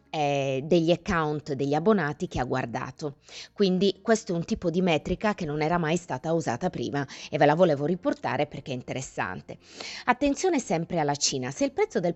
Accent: native